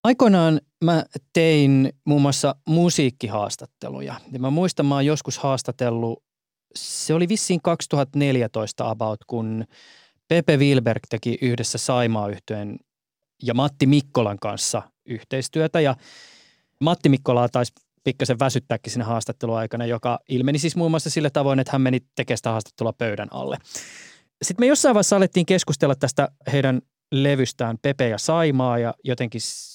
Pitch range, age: 125-175 Hz, 20-39